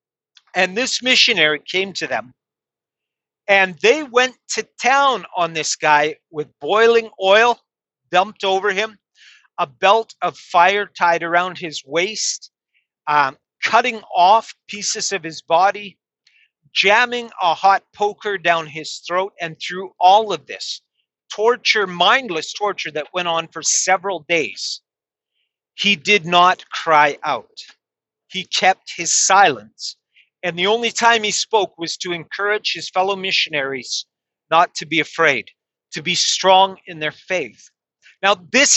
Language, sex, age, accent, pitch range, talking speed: English, male, 50-69, American, 170-215 Hz, 140 wpm